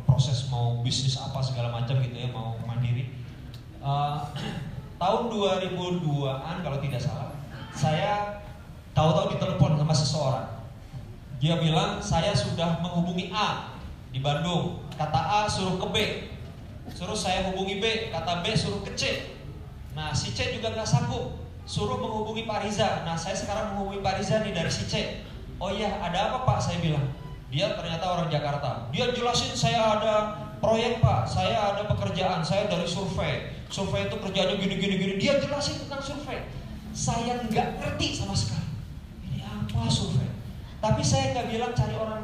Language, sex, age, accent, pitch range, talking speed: Indonesian, male, 30-49, native, 135-195 Hz, 155 wpm